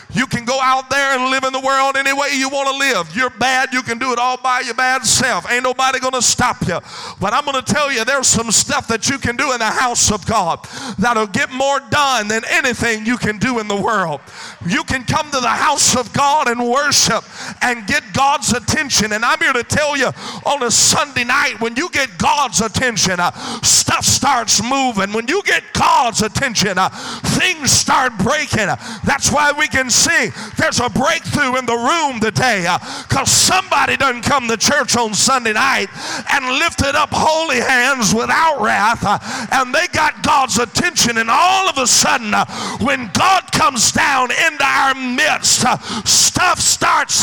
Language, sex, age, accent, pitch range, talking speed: English, male, 40-59, American, 225-275 Hz, 195 wpm